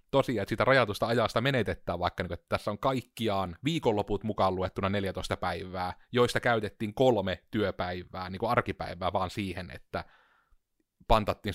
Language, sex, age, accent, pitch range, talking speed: Finnish, male, 30-49, native, 95-115 Hz, 130 wpm